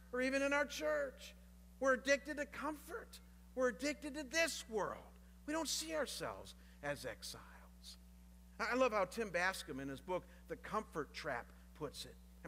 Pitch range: 160-265 Hz